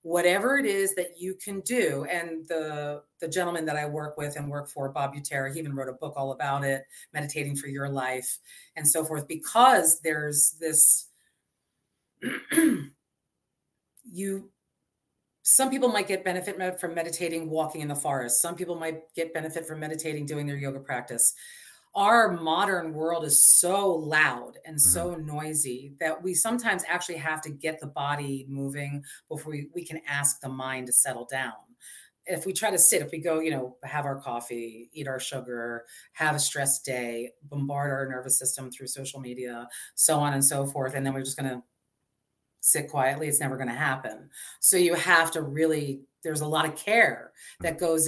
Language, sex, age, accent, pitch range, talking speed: English, female, 30-49, American, 140-175 Hz, 185 wpm